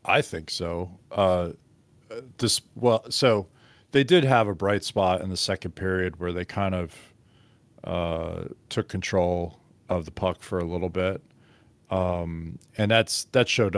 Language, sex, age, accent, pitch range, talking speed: English, male, 40-59, American, 90-110 Hz, 155 wpm